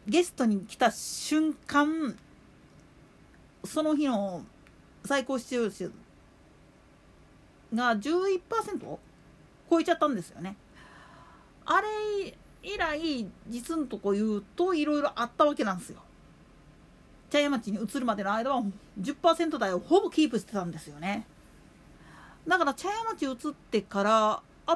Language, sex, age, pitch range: Japanese, female, 40-59, 220-325 Hz